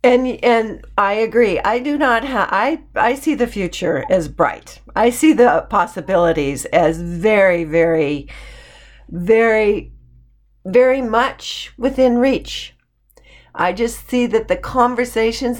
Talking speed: 125 wpm